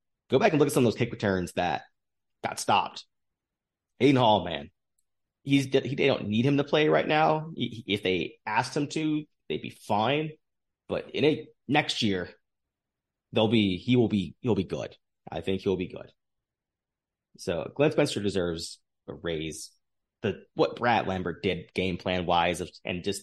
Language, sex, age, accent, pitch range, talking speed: English, male, 30-49, American, 90-115 Hz, 185 wpm